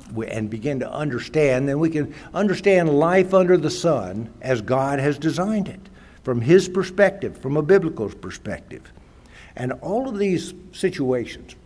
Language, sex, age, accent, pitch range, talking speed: English, male, 60-79, American, 110-155 Hz, 150 wpm